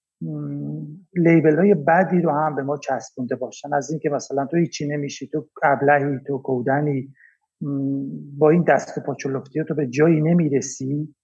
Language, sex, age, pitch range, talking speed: Persian, male, 50-69, 140-190 Hz, 150 wpm